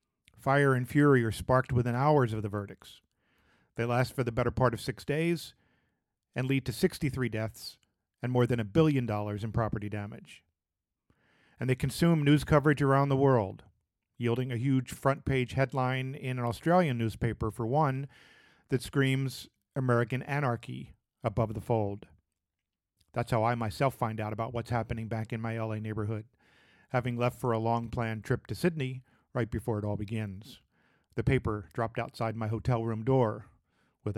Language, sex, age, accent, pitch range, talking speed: English, male, 50-69, American, 110-135 Hz, 165 wpm